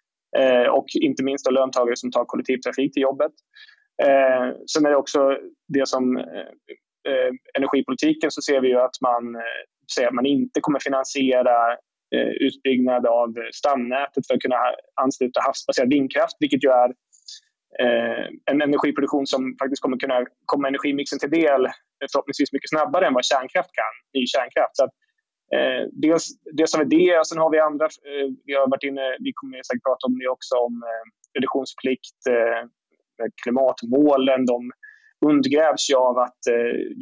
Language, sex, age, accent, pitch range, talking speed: Swedish, male, 20-39, native, 125-165 Hz, 165 wpm